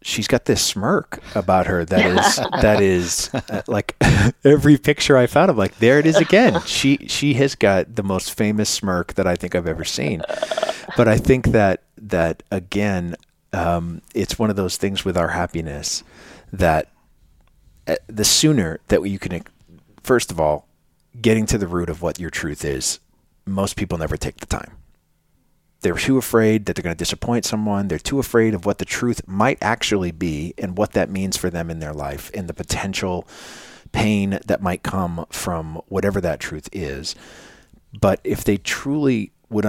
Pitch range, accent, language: 85-110 Hz, American, English